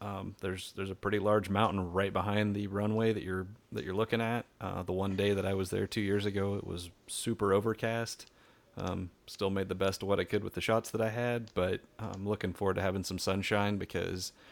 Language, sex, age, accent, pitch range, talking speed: English, male, 30-49, American, 95-105 Hz, 230 wpm